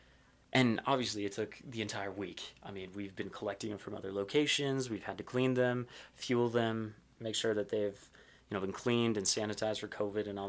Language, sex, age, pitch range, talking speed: English, male, 20-39, 100-125 Hz, 210 wpm